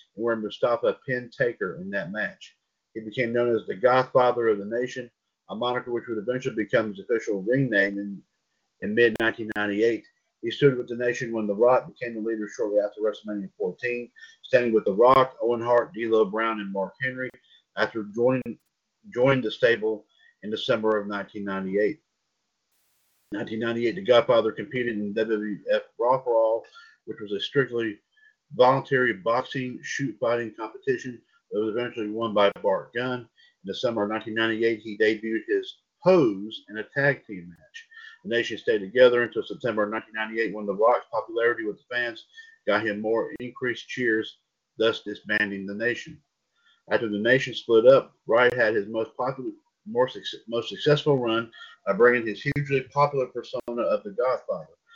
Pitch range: 110-150 Hz